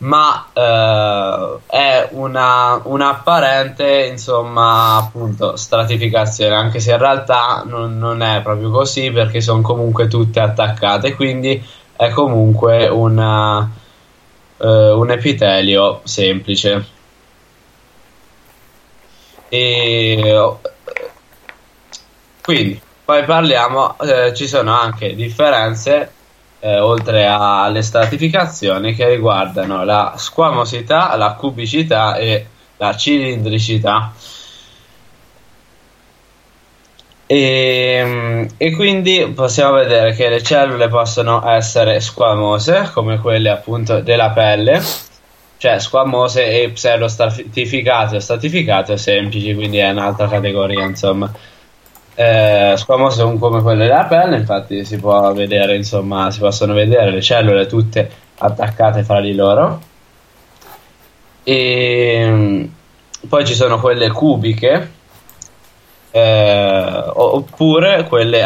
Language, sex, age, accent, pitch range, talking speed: Italian, male, 10-29, native, 105-125 Hz, 95 wpm